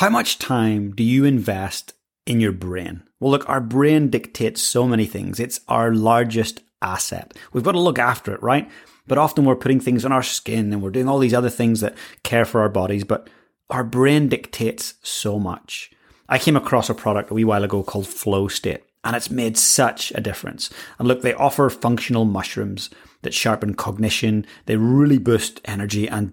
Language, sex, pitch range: English, male, 105-125 Hz